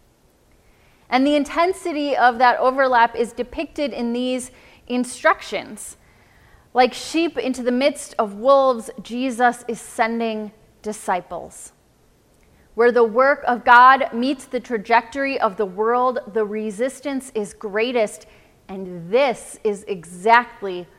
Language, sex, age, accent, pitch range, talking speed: English, female, 30-49, American, 210-260 Hz, 115 wpm